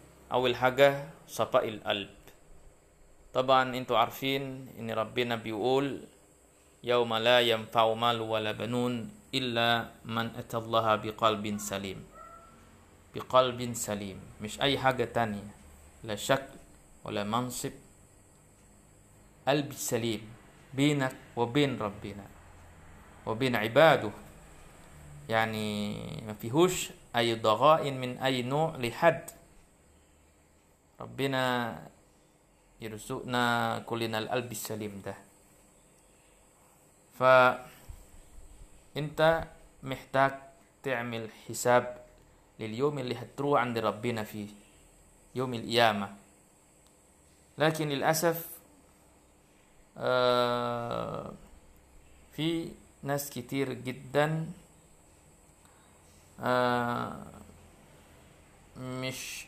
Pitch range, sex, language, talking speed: 100-130 Hz, male, Arabic, 75 wpm